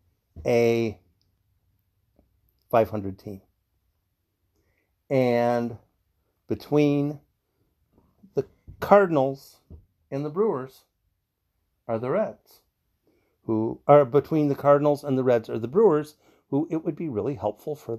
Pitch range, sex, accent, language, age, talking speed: 100-160 Hz, male, American, English, 50-69, 105 wpm